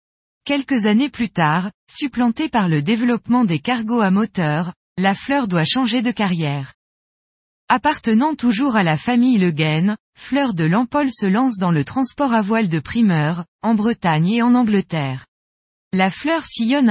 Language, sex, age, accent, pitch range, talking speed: French, female, 20-39, French, 180-245 Hz, 155 wpm